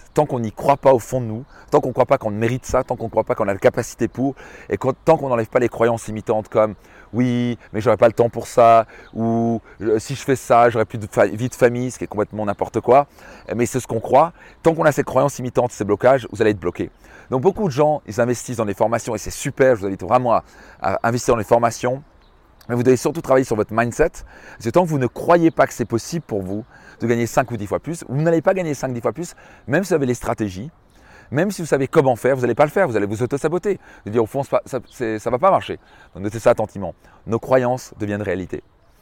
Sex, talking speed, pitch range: male, 280 wpm, 110-135 Hz